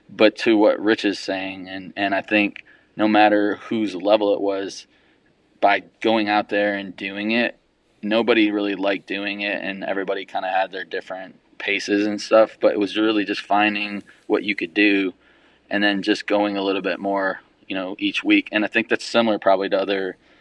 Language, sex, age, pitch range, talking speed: English, male, 20-39, 95-105 Hz, 200 wpm